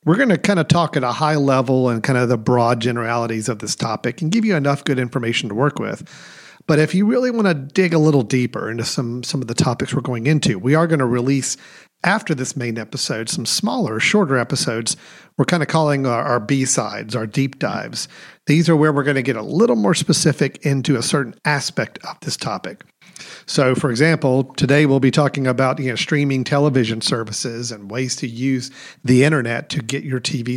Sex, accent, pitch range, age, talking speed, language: male, American, 125-155 Hz, 50-69, 215 wpm, English